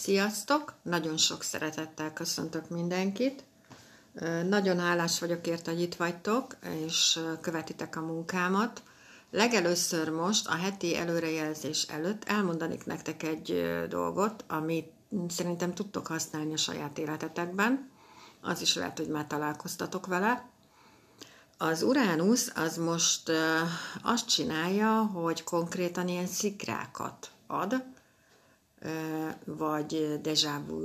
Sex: female